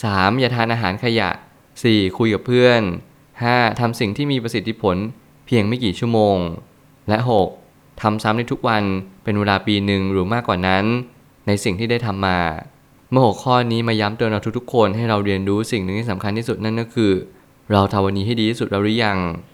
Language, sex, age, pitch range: Thai, male, 20-39, 100-115 Hz